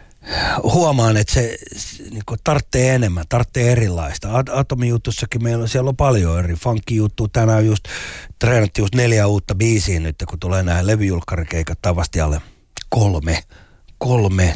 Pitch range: 90-120 Hz